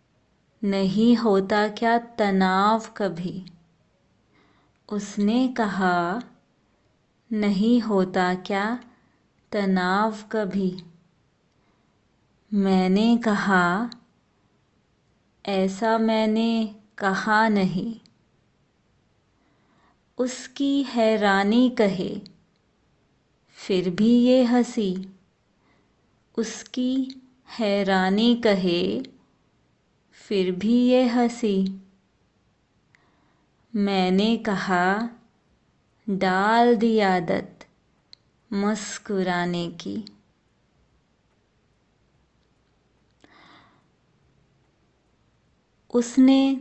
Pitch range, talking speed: 190-230 Hz, 50 wpm